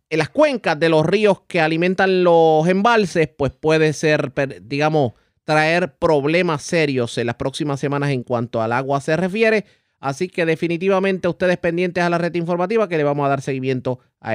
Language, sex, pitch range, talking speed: Spanish, male, 140-185 Hz, 180 wpm